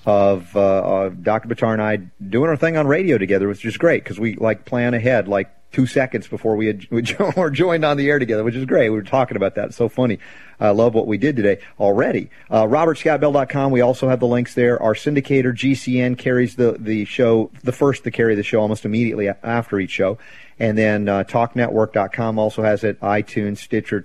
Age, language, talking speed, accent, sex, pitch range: 40-59, English, 215 wpm, American, male, 110-140 Hz